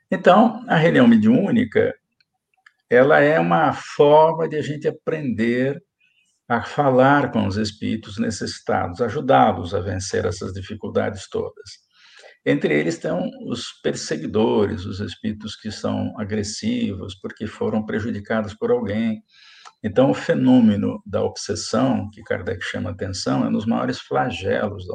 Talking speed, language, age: 125 wpm, Polish, 50-69